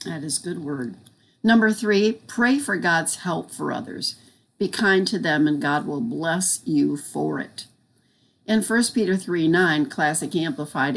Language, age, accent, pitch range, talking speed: English, 60-79, American, 160-220 Hz, 170 wpm